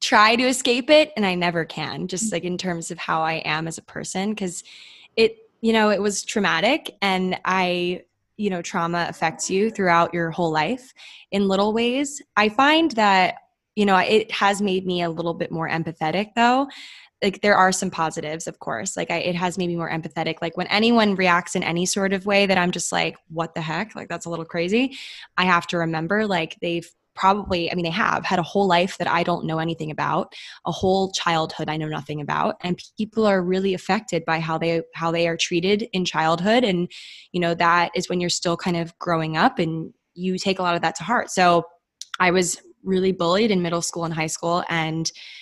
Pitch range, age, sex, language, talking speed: 170-205 Hz, 10-29, female, English, 220 wpm